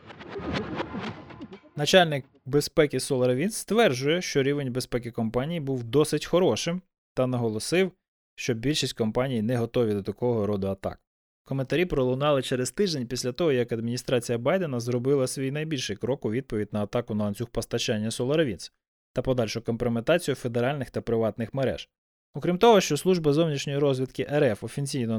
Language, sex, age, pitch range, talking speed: Ukrainian, male, 20-39, 115-150 Hz, 140 wpm